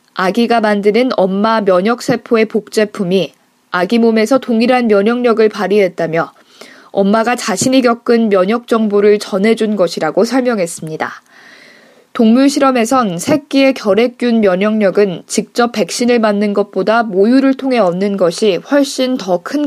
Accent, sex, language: native, female, Korean